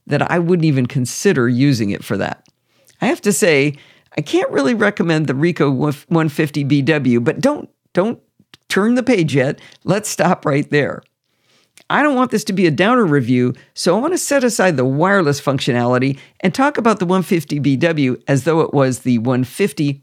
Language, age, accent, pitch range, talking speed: English, 50-69, American, 135-195 Hz, 175 wpm